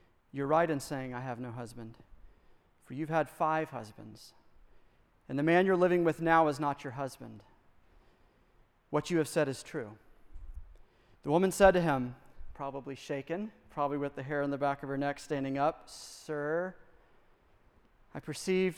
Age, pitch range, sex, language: 40-59, 140-185 Hz, male, English